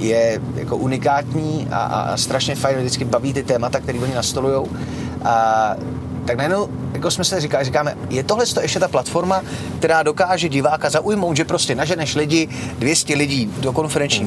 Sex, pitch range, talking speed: male, 130-160 Hz, 165 wpm